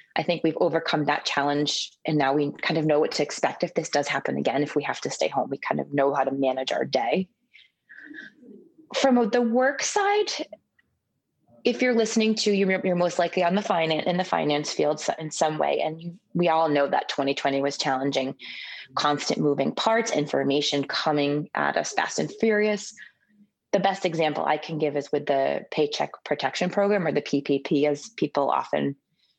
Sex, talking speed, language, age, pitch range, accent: female, 190 wpm, English, 20-39, 145-210 Hz, American